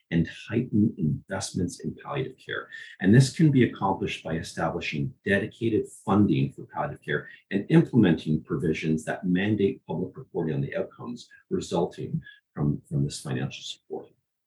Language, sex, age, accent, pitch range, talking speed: English, male, 40-59, American, 95-145 Hz, 140 wpm